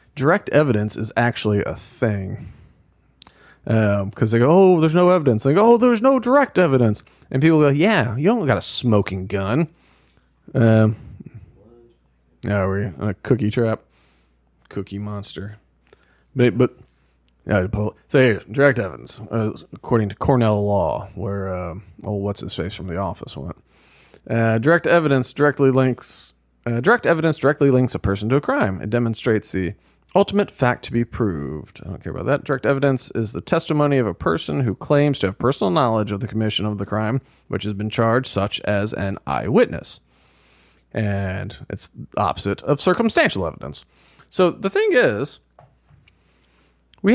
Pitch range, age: 100-135 Hz, 40-59